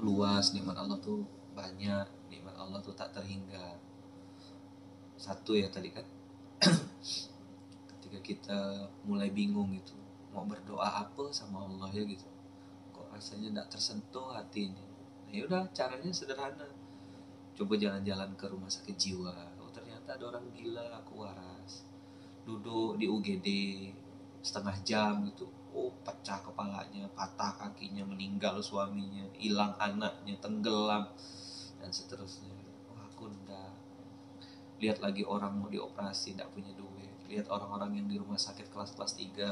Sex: male